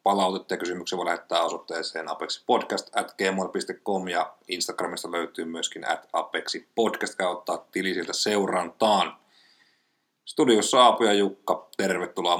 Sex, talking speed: male, 110 wpm